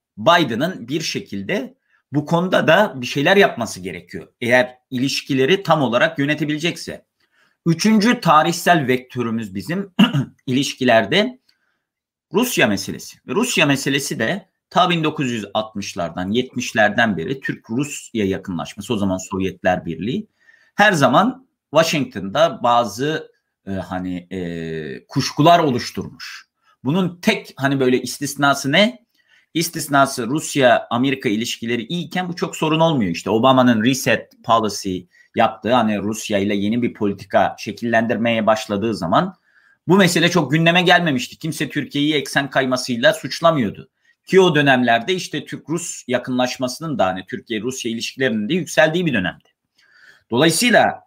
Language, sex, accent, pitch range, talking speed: Turkish, male, native, 120-170 Hz, 115 wpm